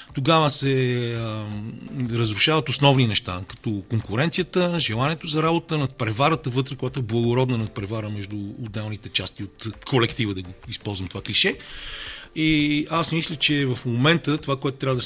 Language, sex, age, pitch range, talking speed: Bulgarian, male, 40-59, 110-140 Hz, 145 wpm